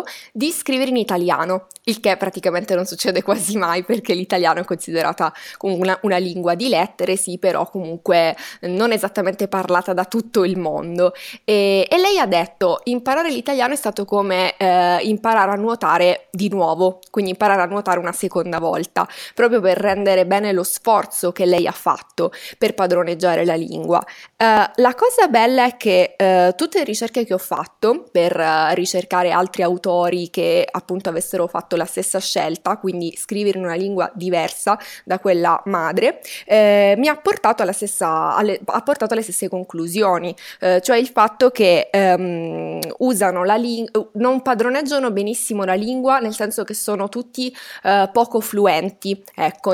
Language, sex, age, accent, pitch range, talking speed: Italian, female, 20-39, native, 180-235 Hz, 160 wpm